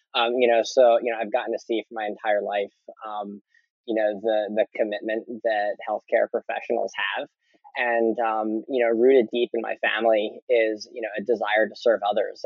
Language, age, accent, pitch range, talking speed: English, 20-39, American, 105-120 Hz, 195 wpm